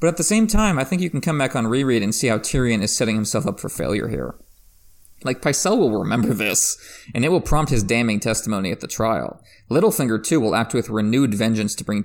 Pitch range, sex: 110-150 Hz, male